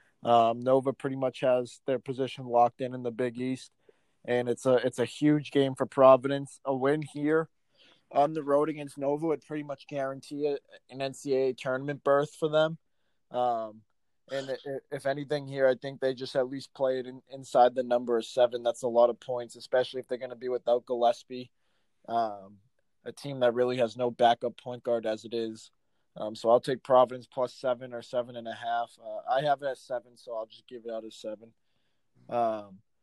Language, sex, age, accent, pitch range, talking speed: English, male, 20-39, American, 125-150 Hz, 210 wpm